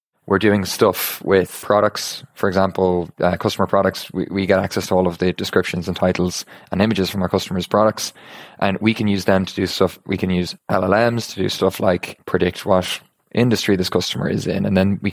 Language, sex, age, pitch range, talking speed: English, male, 20-39, 95-100 Hz, 210 wpm